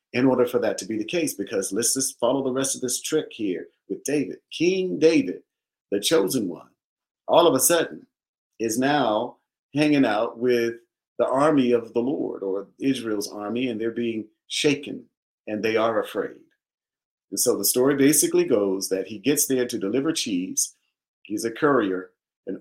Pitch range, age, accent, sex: 115-160 Hz, 50-69, American, male